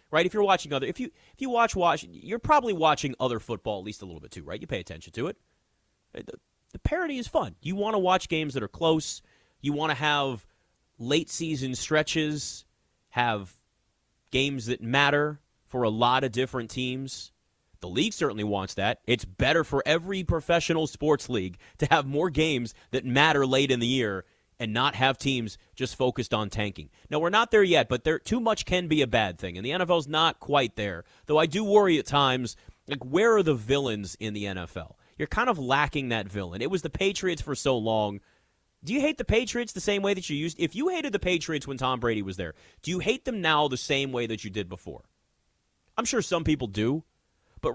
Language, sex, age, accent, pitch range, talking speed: English, male, 30-49, American, 115-170 Hz, 220 wpm